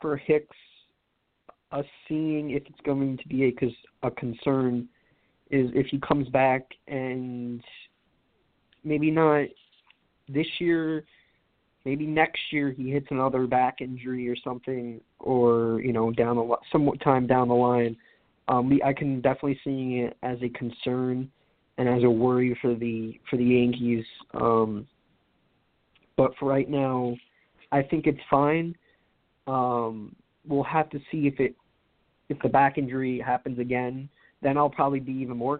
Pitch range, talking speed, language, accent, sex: 125-145 Hz, 150 wpm, English, American, male